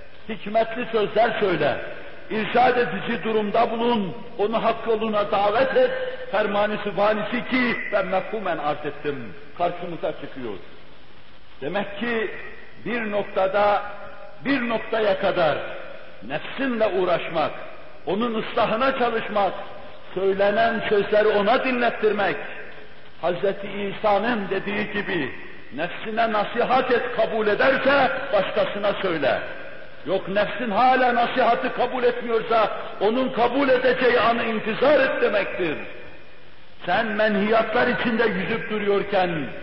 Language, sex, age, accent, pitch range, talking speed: Turkish, male, 60-79, native, 195-235 Hz, 95 wpm